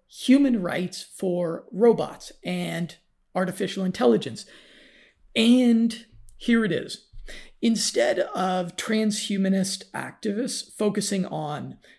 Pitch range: 175-220 Hz